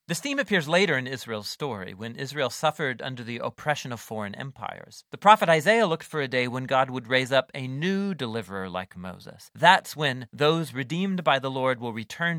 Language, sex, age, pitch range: English, male, 40-59, 130-180 Hz